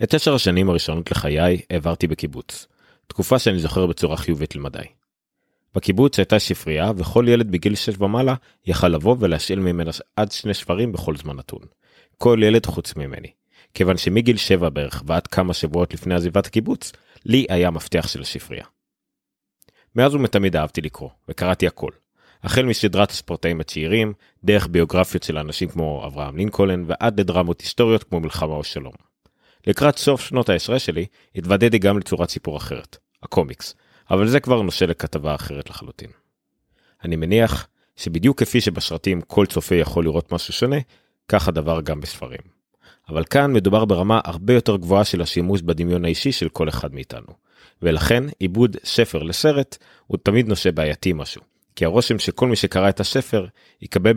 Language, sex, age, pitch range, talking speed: Hebrew, male, 30-49, 85-110 Hz, 145 wpm